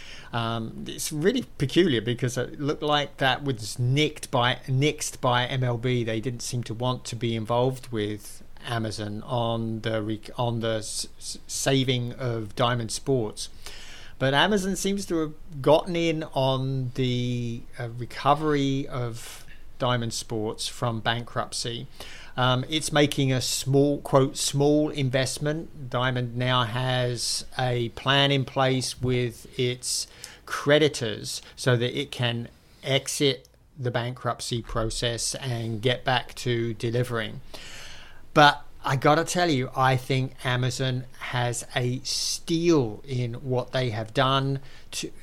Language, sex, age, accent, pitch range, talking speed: English, male, 50-69, British, 115-135 Hz, 130 wpm